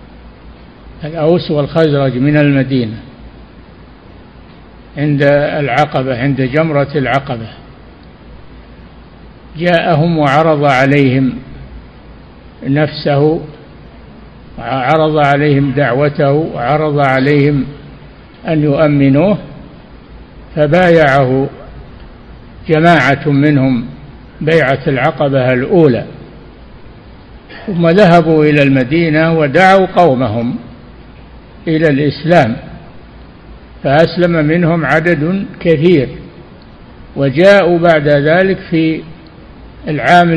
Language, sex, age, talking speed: Arabic, male, 60-79, 65 wpm